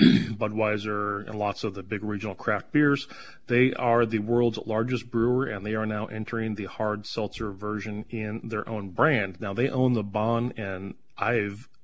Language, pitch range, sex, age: English, 105-120 Hz, male, 30-49